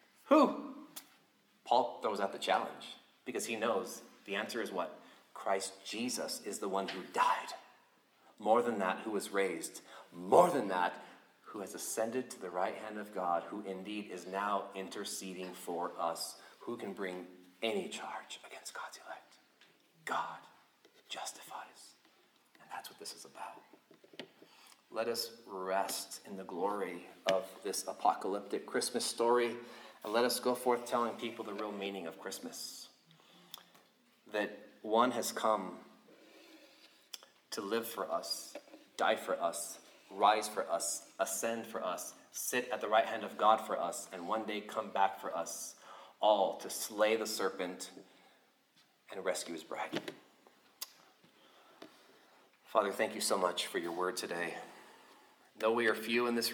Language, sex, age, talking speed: English, male, 30-49, 150 wpm